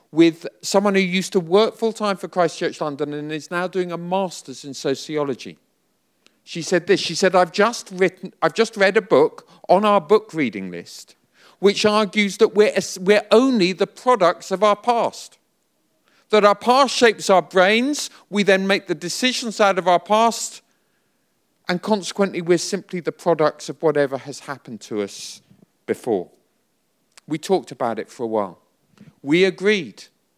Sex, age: male, 40-59